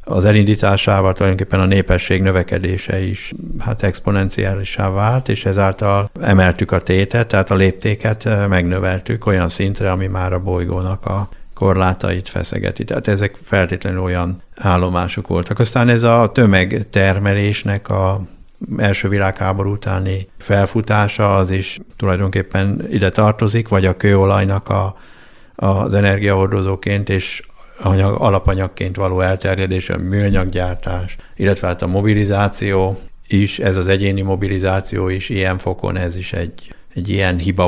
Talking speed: 120 wpm